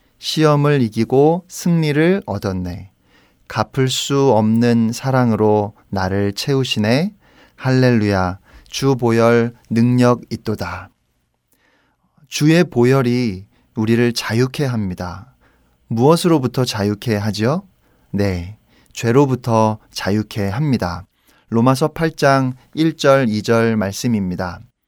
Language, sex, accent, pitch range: Korean, male, native, 105-130 Hz